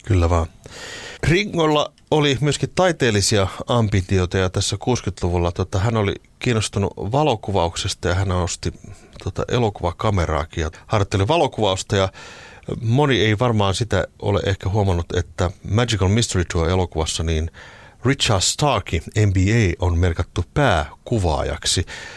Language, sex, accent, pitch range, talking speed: Finnish, male, native, 85-115 Hz, 115 wpm